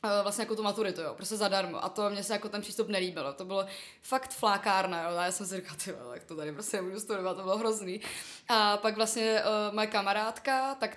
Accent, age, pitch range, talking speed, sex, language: native, 20-39, 185-215 Hz, 230 wpm, female, Czech